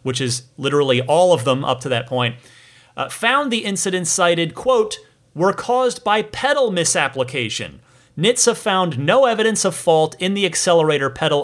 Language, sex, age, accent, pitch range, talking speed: English, male, 30-49, American, 130-185 Hz, 165 wpm